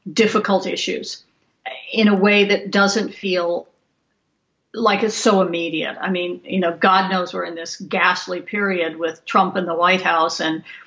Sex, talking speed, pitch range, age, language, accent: female, 165 wpm, 180-210 Hz, 50-69, English, American